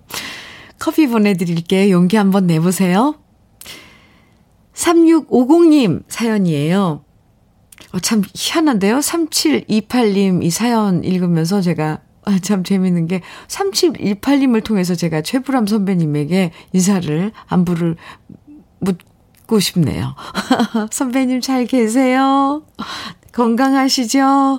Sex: female